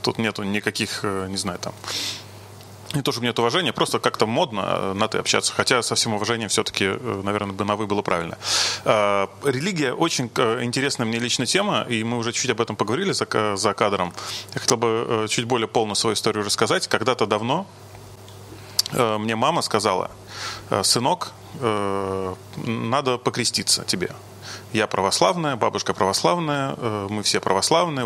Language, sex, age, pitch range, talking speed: Russian, male, 30-49, 105-125 Hz, 145 wpm